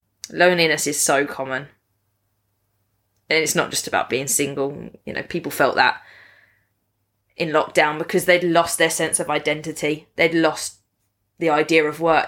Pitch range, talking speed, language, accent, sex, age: 150-185 Hz, 150 wpm, English, British, female, 20-39